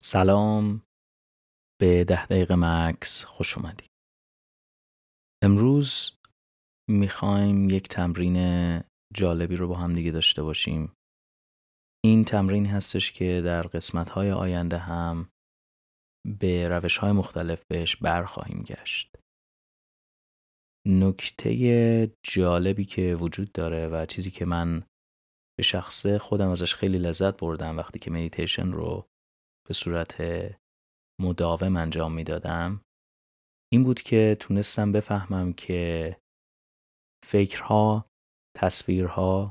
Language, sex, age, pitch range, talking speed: Persian, male, 30-49, 85-100 Hz, 100 wpm